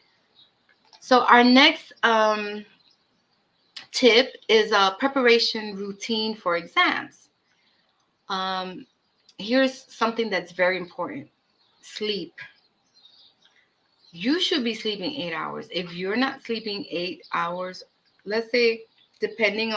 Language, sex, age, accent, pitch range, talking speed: English, female, 30-49, American, 180-240 Hz, 100 wpm